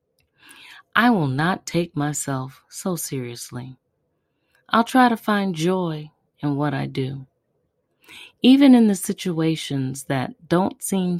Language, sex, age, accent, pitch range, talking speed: English, female, 30-49, American, 135-175 Hz, 125 wpm